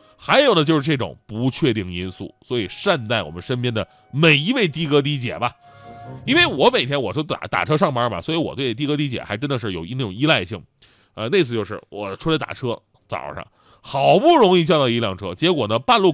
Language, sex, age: Chinese, male, 30-49